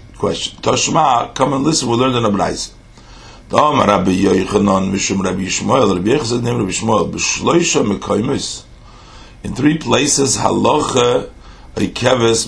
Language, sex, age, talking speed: English, male, 50-69, 65 wpm